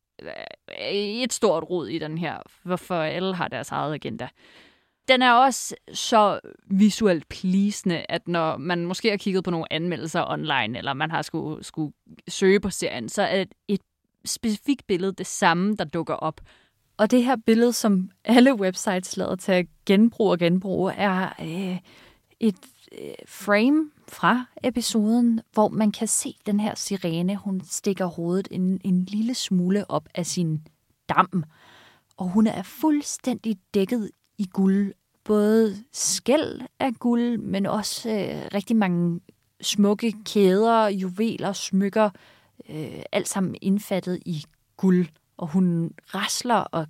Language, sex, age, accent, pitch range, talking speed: Danish, female, 20-39, native, 175-215 Hz, 145 wpm